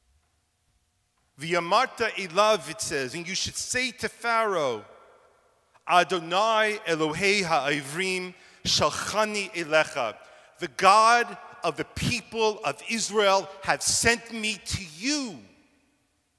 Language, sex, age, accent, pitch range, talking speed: English, male, 40-59, American, 140-215 Hz, 100 wpm